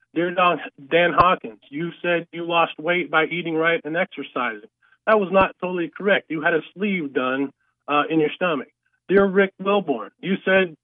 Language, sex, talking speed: English, male, 175 wpm